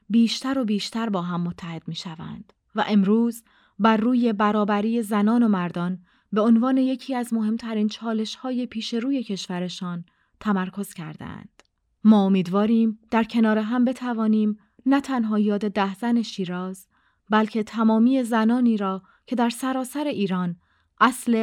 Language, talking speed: Persian, 130 wpm